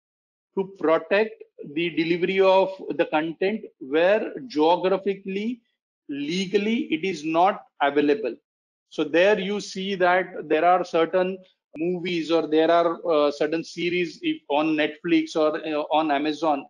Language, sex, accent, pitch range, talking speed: English, male, Indian, 155-190 Hz, 125 wpm